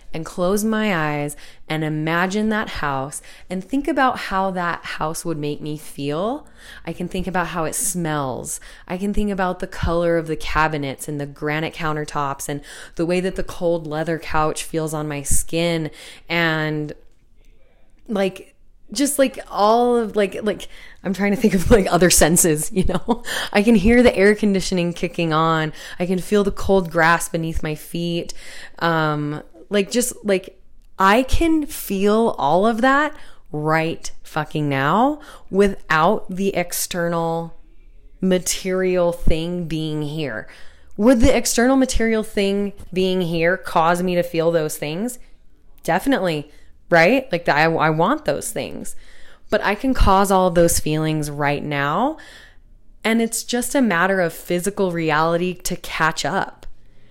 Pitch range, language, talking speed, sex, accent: 155-205 Hz, English, 155 wpm, female, American